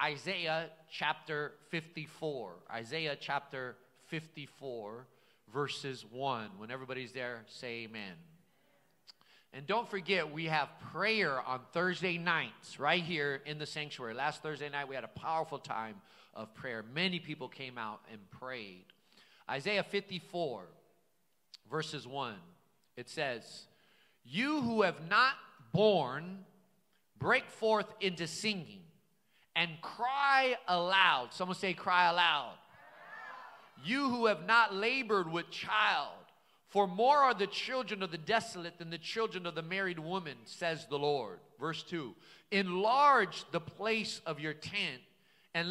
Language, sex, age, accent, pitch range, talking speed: English, male, 40-59, American, 150-210 Hz, 130 wpm